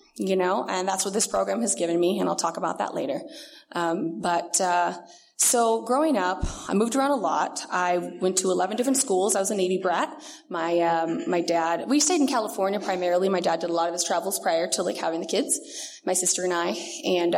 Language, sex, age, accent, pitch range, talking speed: English, female, 20-39, American, 175-275 Hz, 230 wpm